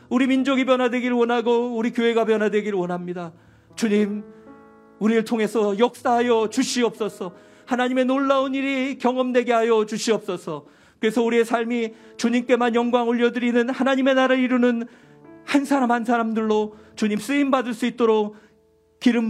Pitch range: 195-235 Hz